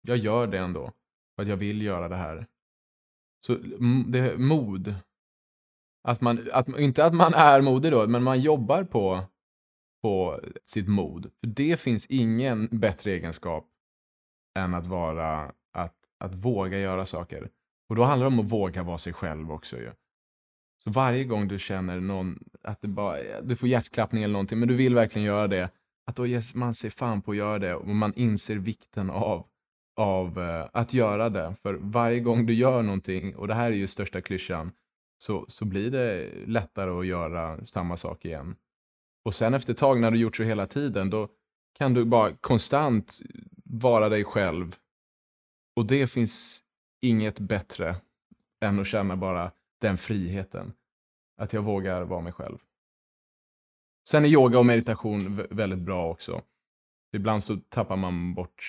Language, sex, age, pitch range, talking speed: Swedish, male, 20-39, 95-120 Hz, 170 wpm